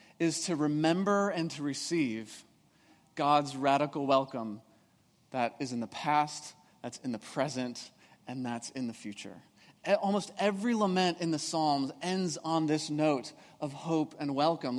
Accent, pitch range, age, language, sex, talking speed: American, 135-175 Hz, 30-49, English, male, 150 wpm